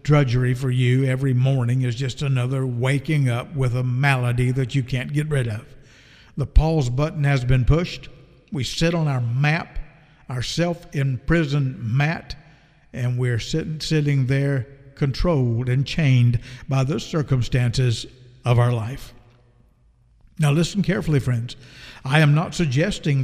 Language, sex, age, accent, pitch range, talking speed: English, male, 60-79, American, 130-165 Hz, 145 wpm